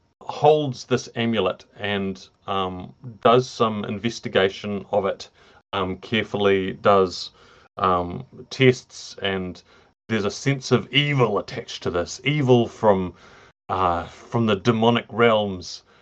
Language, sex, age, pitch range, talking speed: English, male, 30-49, 100-135 Hz, 115 wpm